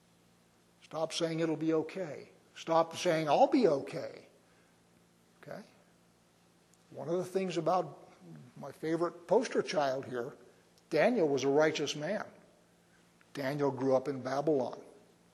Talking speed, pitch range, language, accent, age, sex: 120 wpm, 135-170 Hz, English, American, 60-79, male